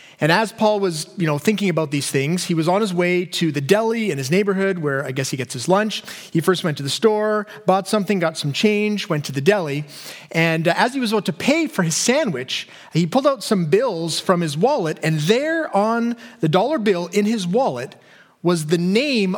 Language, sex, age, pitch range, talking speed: English, male, 30-49, 165-225 Hz, 225 wpm